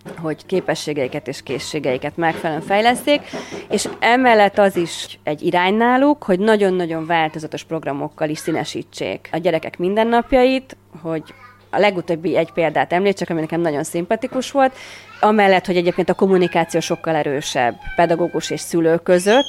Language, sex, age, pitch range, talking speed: Hungarian, female, 30-49, 160-200 Hz, 140 wpm